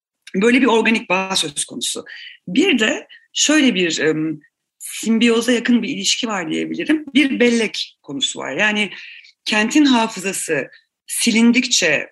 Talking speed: 120 wpm